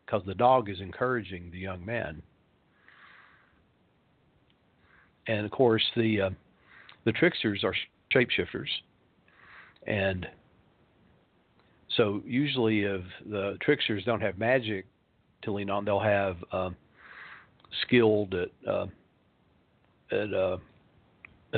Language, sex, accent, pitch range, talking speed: English, male, American, 95-115 Hz, 105 wpm